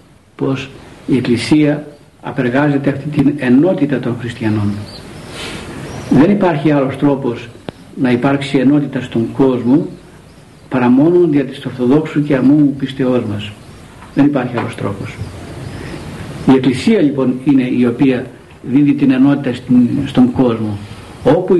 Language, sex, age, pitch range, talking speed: Greek, male, 60-79, 125-150 Hz, 120 wpm